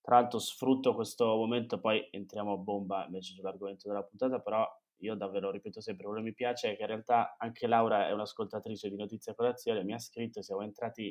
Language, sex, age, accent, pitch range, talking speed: Italian, male, 20-39, native, 100-125 Hz, 205 wpm